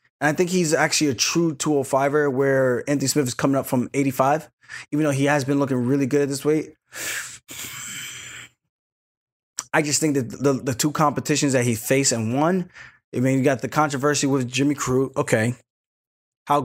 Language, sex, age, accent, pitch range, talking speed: English, male, 20-39, American, 130-155 Hz, 185 wpm